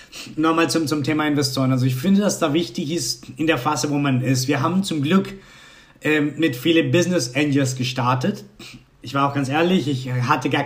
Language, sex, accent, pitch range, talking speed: German, male, German, 140-170 Hz, 205 wpm